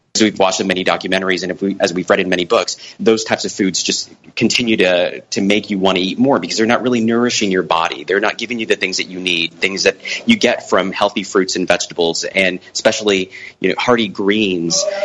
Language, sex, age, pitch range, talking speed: English, male, 30-49, 95-125 Hz, 230 wpm